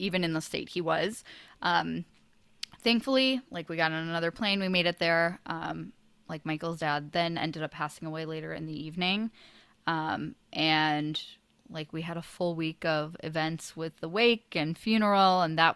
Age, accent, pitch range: 10-29, American, 160-200 Hz